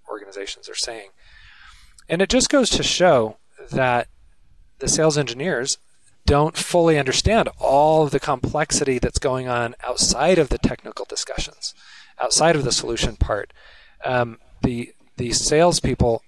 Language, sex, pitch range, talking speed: English, male, 125-160 Hz, 135 wpm